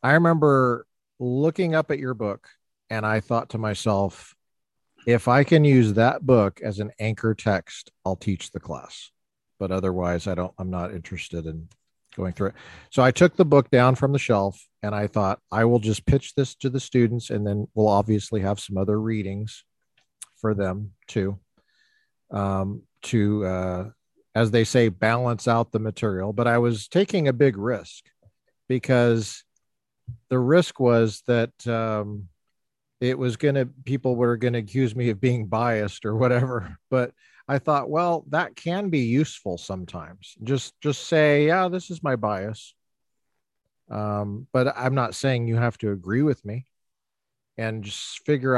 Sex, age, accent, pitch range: male, 50-69, American, 105-130 Hz